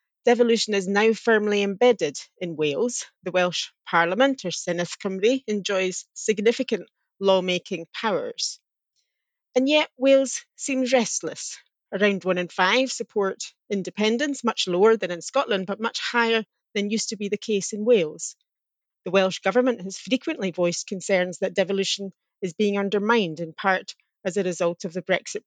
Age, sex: 30-49, female